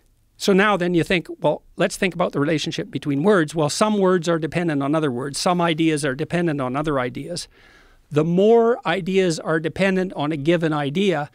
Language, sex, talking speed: English, male, 195 wpm